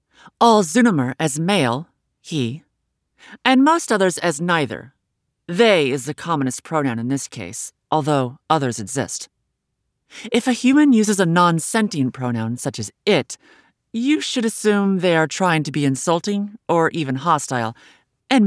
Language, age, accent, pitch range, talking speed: English, 30-49, American, 130-185 Hz, 145 wpm